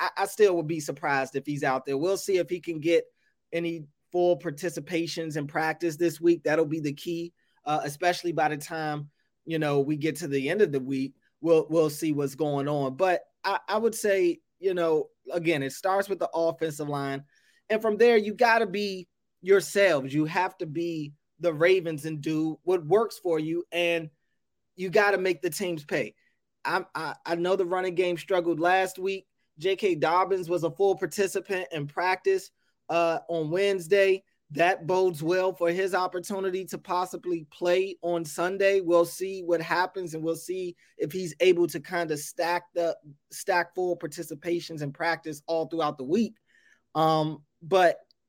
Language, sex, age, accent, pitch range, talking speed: English, male, 20-39, American, 155-185 Hz, 185 wpm